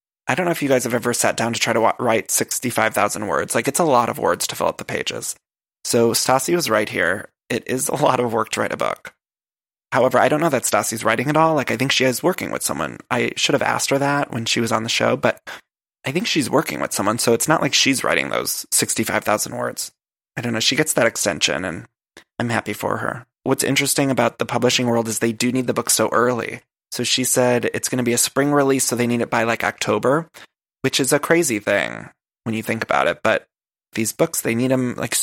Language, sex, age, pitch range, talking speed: English, male, 20-39, 115-135 Hz, 250 wpm